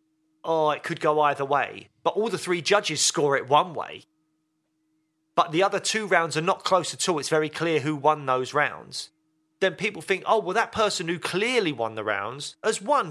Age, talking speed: 30-49, 210 wpm